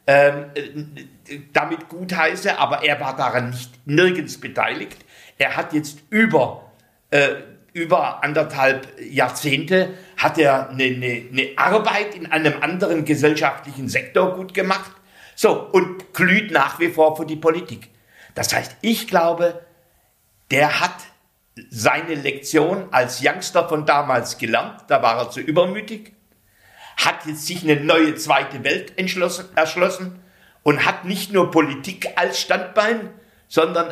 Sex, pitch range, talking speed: male, 145-185 Hz, 130 wpm